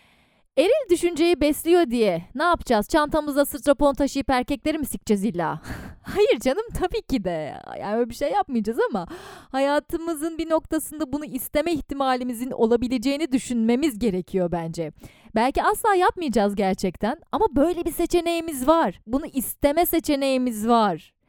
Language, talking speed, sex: Turkish, 135 wpm, female